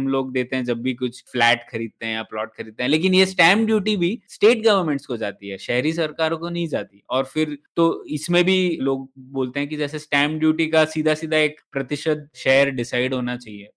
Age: 20-39